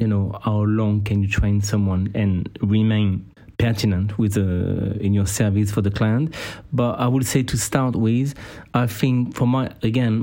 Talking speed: 180 wpm